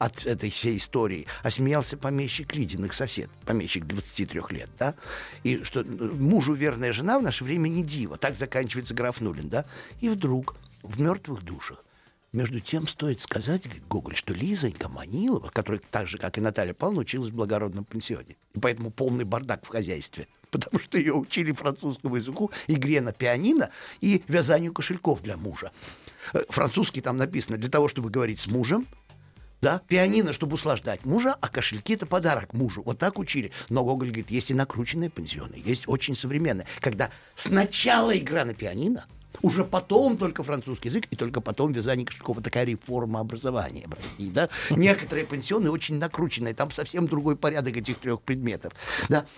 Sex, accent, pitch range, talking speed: male, native, 115-155 Hz, 165 wpm